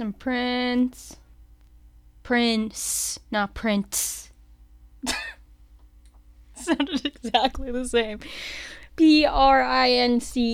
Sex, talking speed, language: female, 75 wpm, English